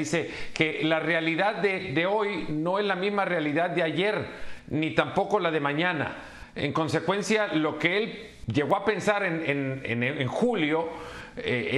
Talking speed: 170 wpm